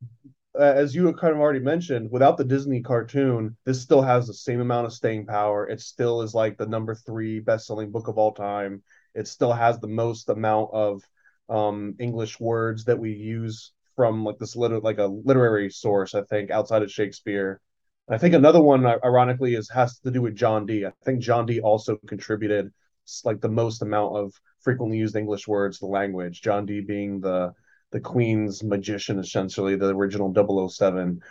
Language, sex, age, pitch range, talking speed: English, male, 20-39, 105-125 Hz, 190 wpm